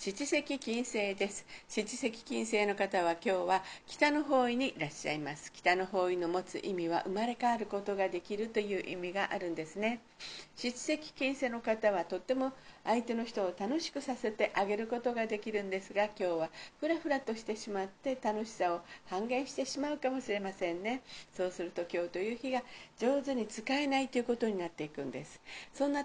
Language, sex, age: Japanese, female, 50-69